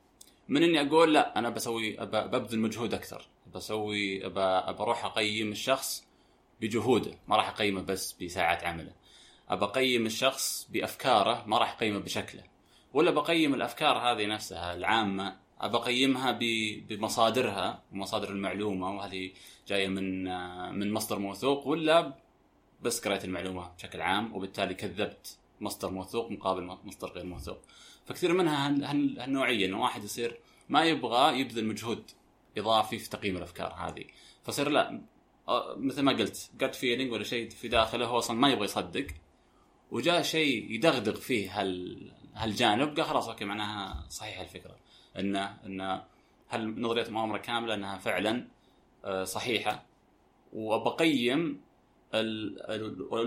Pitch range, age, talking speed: 95-120 Hz, 20-39, 130 wpm